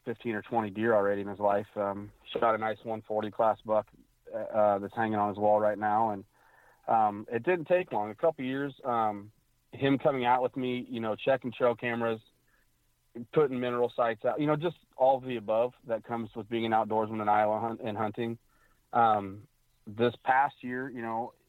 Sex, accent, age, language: male, American, 30-49, English